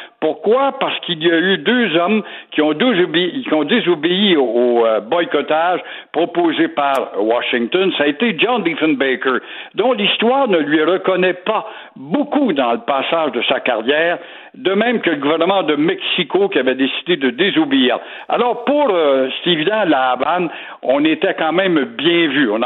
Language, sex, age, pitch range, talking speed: French, male, 60-79, 150-240 Hz, 160 wpm